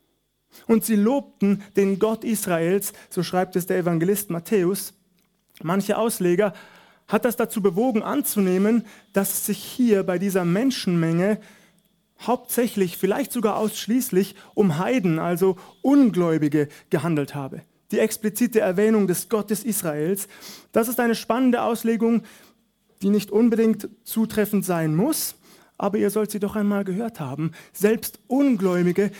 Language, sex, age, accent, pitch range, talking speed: German, male, 30-49, German, 185-220 Hz, 130 wpm